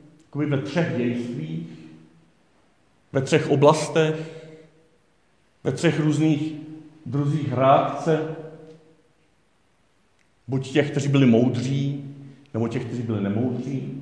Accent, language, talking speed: native, Czech, 90 wpm